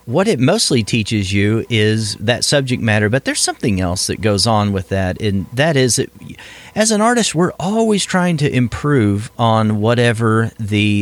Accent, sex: American, male